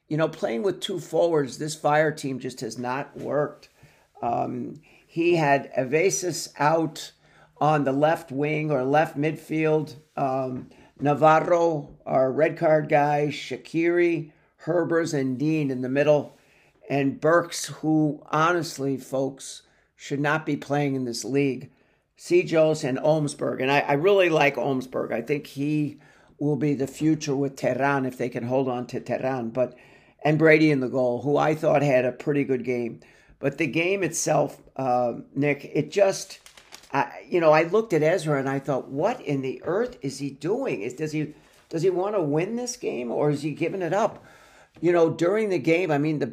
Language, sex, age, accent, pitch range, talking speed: English, male, 50-69, American, 135-160 Hz, 180 wpm